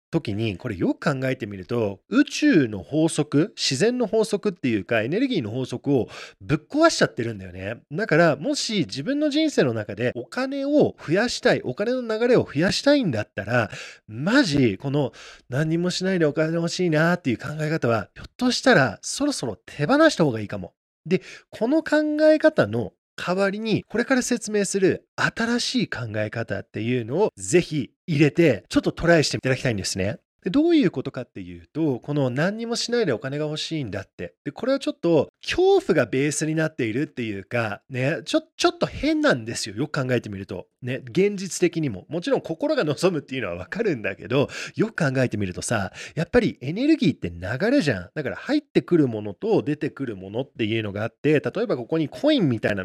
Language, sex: Japanese, male